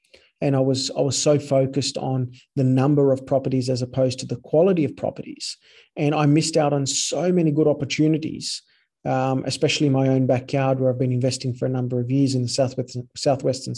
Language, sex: English, male